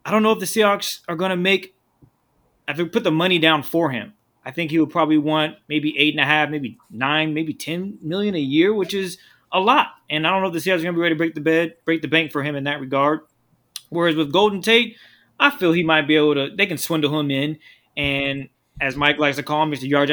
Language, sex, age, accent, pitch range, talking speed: English, male, 20-39, American, 140-165 Hz, 260 wpm